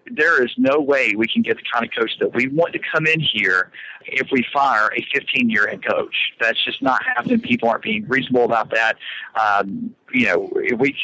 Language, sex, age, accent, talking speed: English, male, 50-69, American, 210 wpm